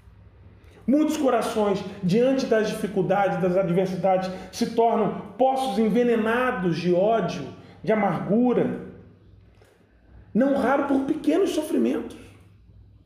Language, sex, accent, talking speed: Portuguese, male, Brazilian, 90 wpm